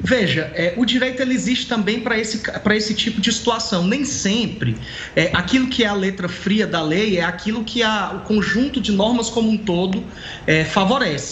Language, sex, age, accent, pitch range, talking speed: Portuguese, male, 20-39, Brazilian, 165-215 Hz, 170 wpm